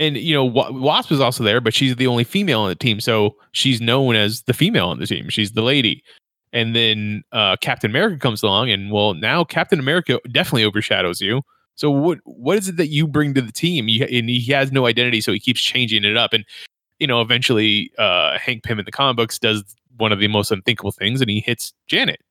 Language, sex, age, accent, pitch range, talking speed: English, male, 20-39, American, 110-135 Hz, 235 wpm